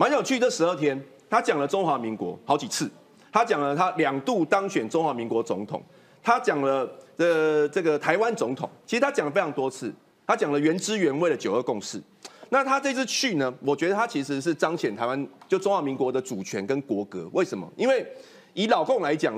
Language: Chinese